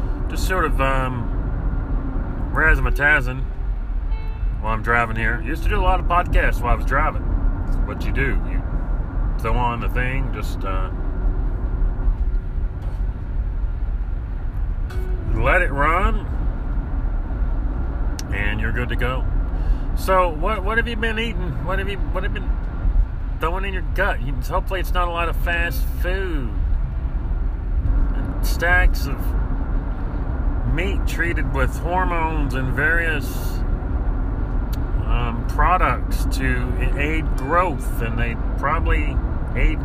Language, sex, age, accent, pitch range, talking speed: English, male, 30-49, American, 80-115 Hz, 120 wpm